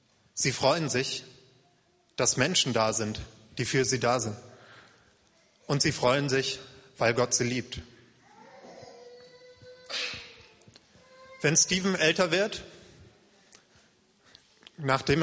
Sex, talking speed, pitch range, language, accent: male, 100 wpm, 120-155 Hz, German, German